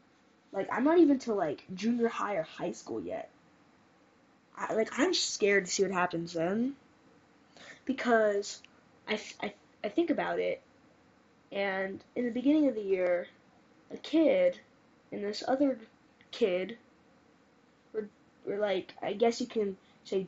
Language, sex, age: English, female, 10-29